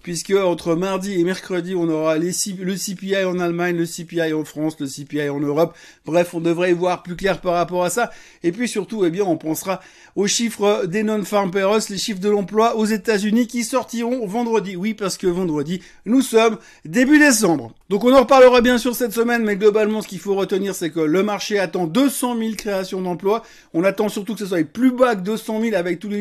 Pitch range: 180-215 Hz